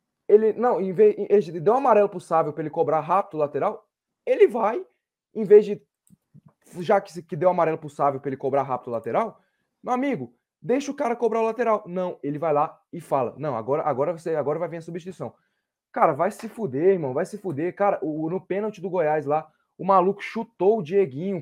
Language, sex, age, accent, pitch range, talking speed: Portuguese, male, 20-39, Brazilian, 165-210 Hz, 225 wpm